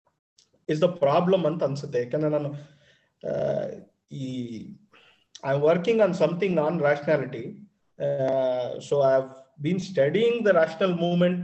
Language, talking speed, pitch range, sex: Kannada, 120 wpm, 145-230 Hz, male